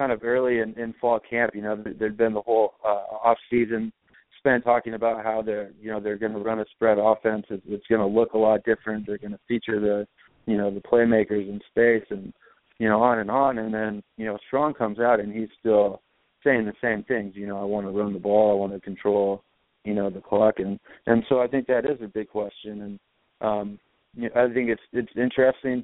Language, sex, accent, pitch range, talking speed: English, male, American, 105-110 Hz, 240 wpm